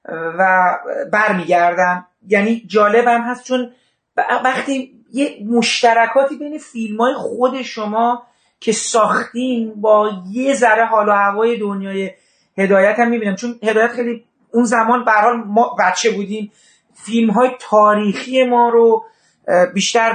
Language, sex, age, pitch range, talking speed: Persian, male, 40-59, 210-245 Hz, 120 wpm